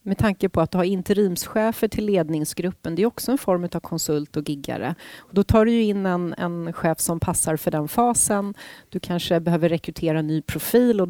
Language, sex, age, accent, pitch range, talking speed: Swedish, female, 30-49, native, 160-200 Hz, 200 wpm